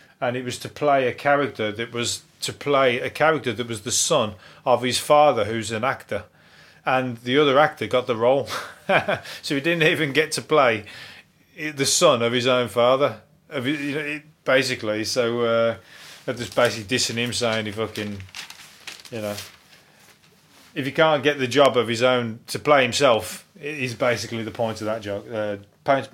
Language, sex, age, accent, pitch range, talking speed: English, male, 30-49, British, 120-150 Hz, 175 wpm